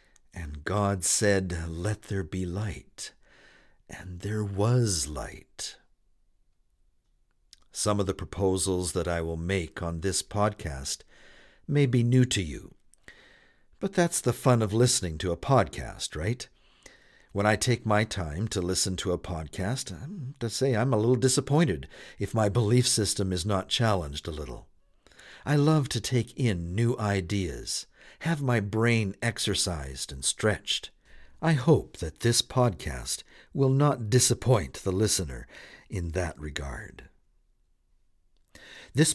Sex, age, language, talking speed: male, 60-79, English, 140 wpm